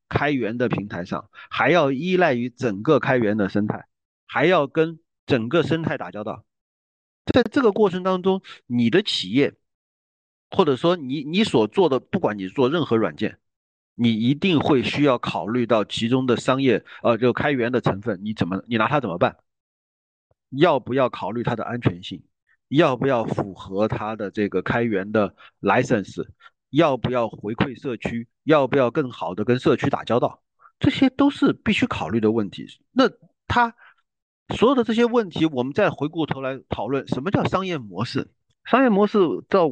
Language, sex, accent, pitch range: Chinese, male, native, 110-170 Hz